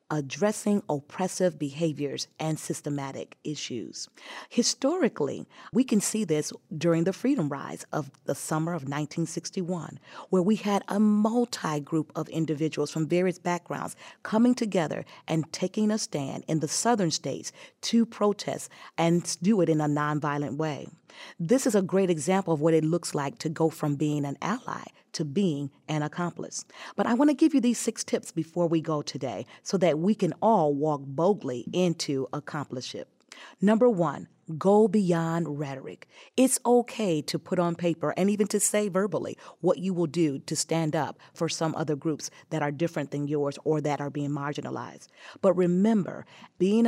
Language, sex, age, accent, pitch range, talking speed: English, female, 40-59, American, 150-200 Hz, 170 wpm